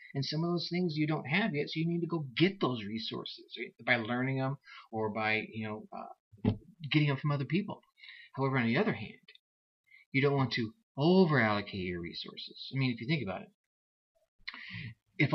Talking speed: 195 wpm